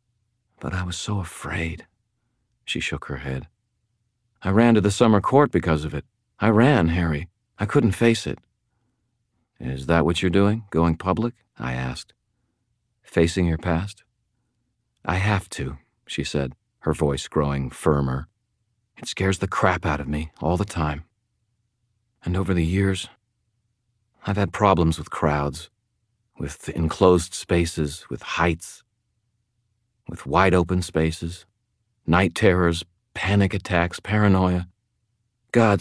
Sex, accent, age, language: male, American, 40-59, English